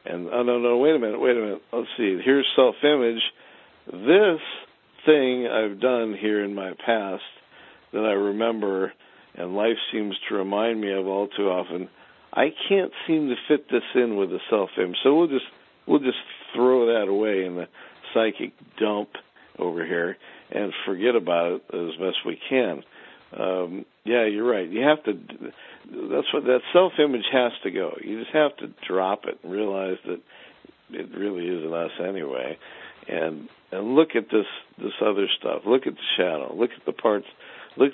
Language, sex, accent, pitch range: English, male, American, 100-130 Hz